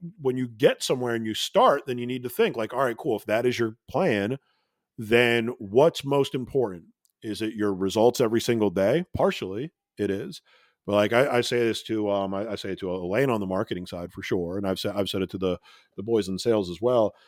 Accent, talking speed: American, 240 wpm